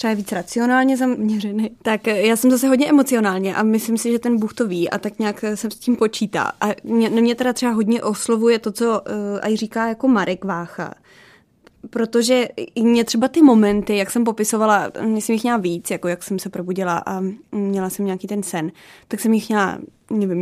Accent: native